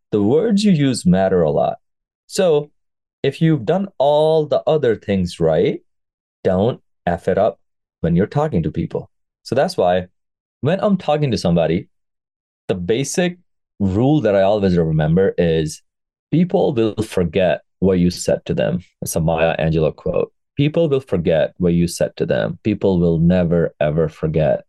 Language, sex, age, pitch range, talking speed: English, male, 30-49, 85-140 Hz, 165 wpm